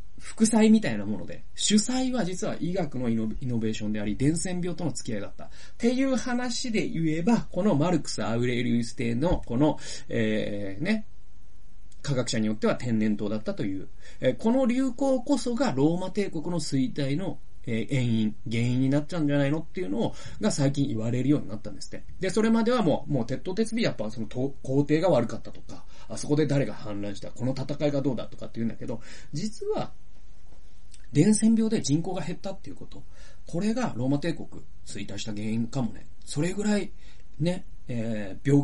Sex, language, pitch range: male, Japanese, 110-170 Hz